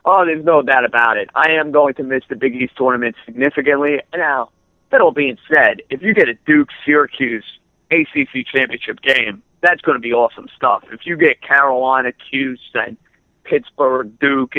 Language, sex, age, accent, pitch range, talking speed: English, male, 50-69, American, 125-160 Hz, 170 wpm